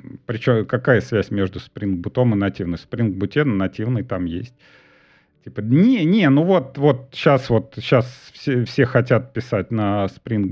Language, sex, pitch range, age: Russian, male, 100-130 Hz, 40-59